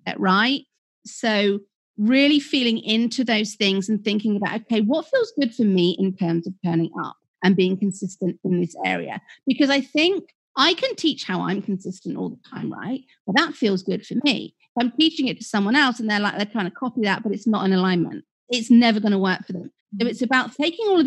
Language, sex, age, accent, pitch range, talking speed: English, female, 40-59, British, 185-240 Hz, 230 wpm